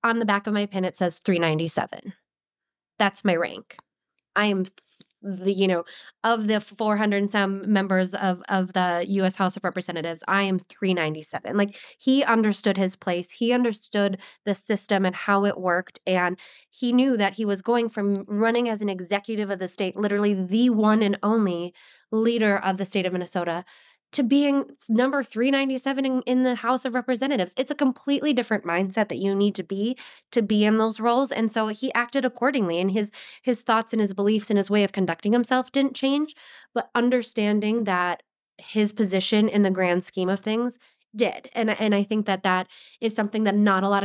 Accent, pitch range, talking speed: American, 190-230 Hz, 190 wpm